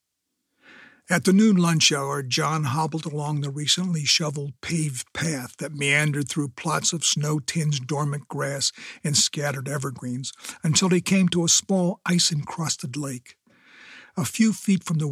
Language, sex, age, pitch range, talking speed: English, male, 60-79, 140-175 Hz, 145 wpm